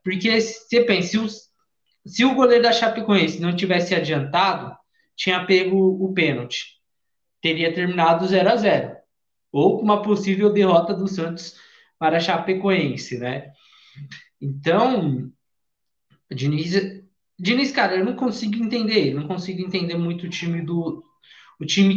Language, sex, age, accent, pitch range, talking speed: Portuguese, male, 20-39, Brazilian, 170-230 Hz, 120 wpm